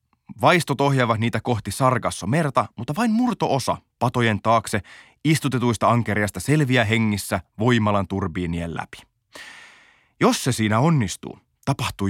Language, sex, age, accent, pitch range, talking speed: Finnish, male, 30-49, native, 105-150 Hz, 110 wpm